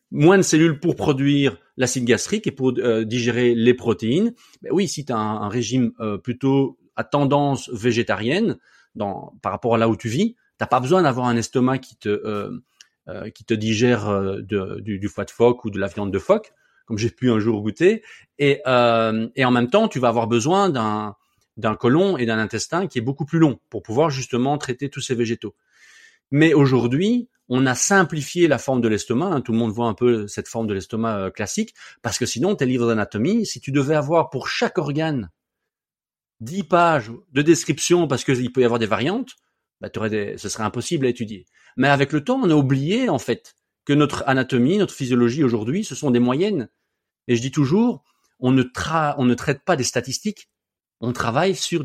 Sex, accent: male, French